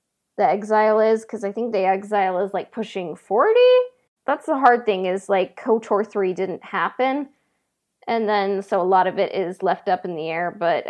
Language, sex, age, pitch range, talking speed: English, female, 20-39, 185-220 Hz, 200 wpm